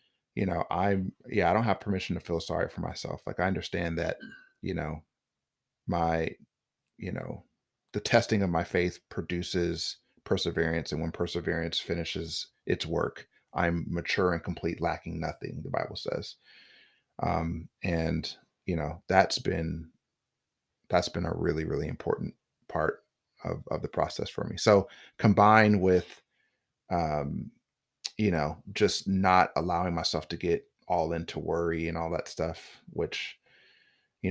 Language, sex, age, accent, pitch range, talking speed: English, male, 30-49, American, 80-90 Hz, 145 wpm